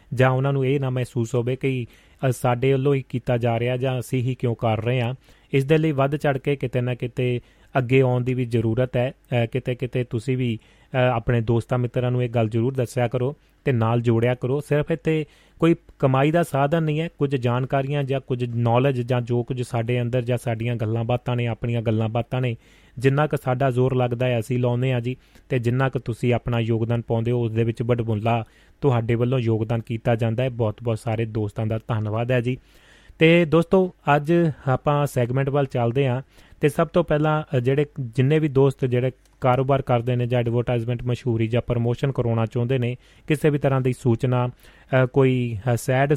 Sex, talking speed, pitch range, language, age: male, 165 wpm, 120-135 Hz, Punjabi, 30-49